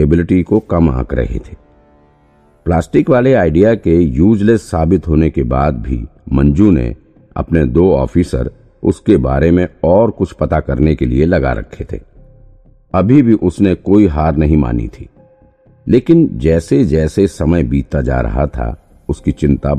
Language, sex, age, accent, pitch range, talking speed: Hindi, male, 50-69, native, 75-95 Hz, 155 wpm